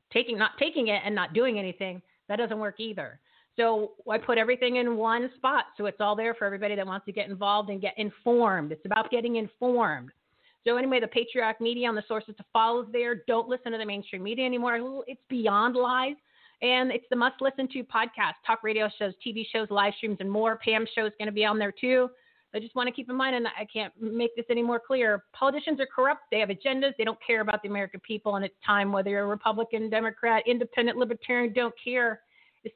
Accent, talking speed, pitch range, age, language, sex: American, 225 wpm, 210-245 Hz, 30-49, English, female